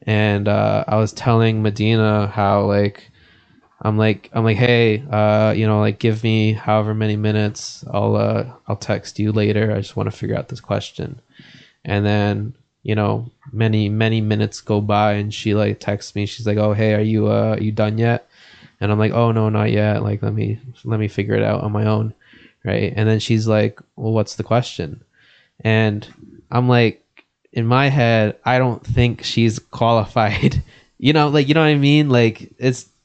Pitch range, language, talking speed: 105-120 Hz, English, 200 wpm